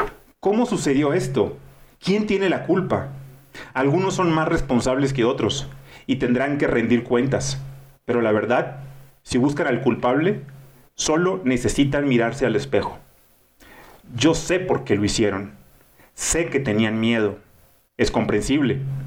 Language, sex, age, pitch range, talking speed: Spanish, male, 40-59, 120-140 Hz, 130 wpm